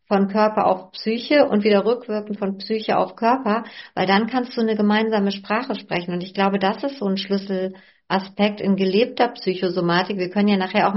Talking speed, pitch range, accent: 190 wpm, 190-220 Hz, German